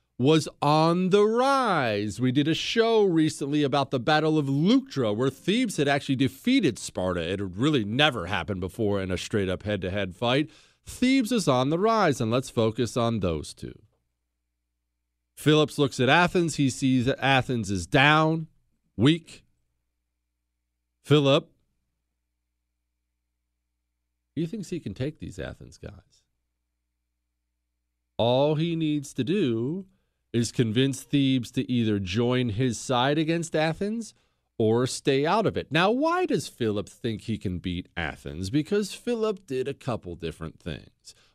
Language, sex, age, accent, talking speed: English, male, 40-59, American, 145 wpm